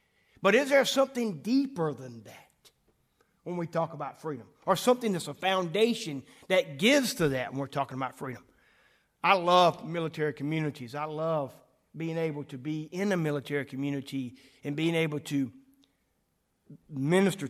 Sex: male